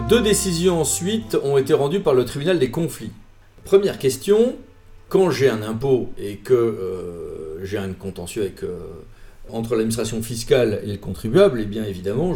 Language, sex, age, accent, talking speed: French, male, 40-59, French, 165 wpm